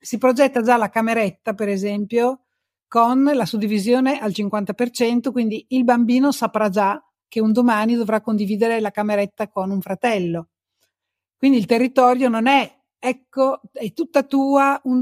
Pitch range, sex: 200-245 Hz, female